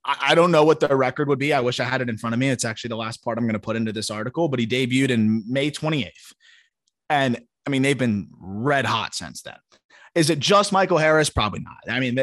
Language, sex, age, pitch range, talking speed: English, male, 20-39, 120-150 Hz, 260 wpm